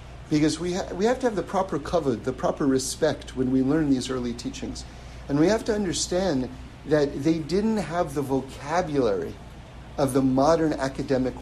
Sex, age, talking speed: male, 50-69, 180 wpm